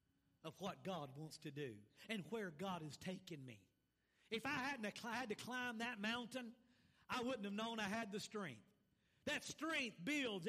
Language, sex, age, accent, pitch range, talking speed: English, male, 50-69, American, 205-285 Hz, 175 wpm